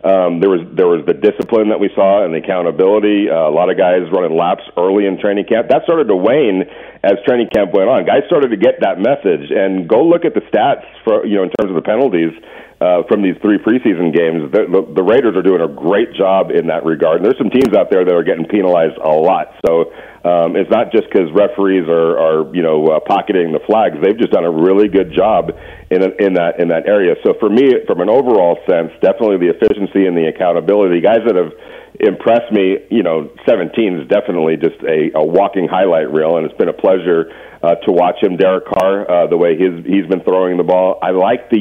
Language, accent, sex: English, American, male